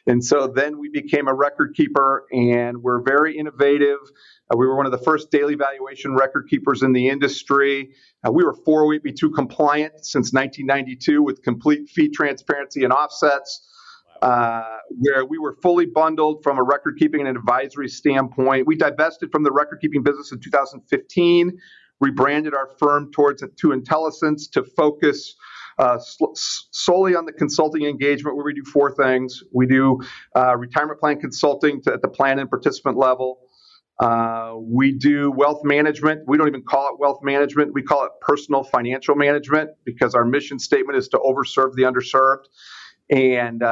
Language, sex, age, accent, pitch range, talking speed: English, male, 40-59, American, 130-150 Hz, 165 wpm